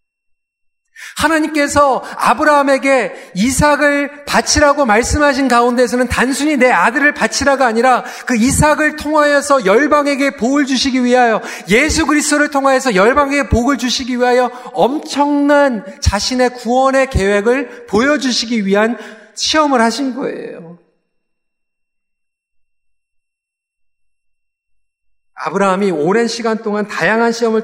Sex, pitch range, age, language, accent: male, 200-270 Hz, 40-59, Korean, native